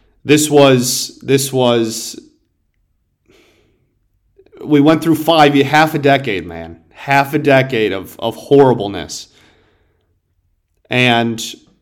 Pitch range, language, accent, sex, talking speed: 115-145 Hz, English, American, male, 95 wpm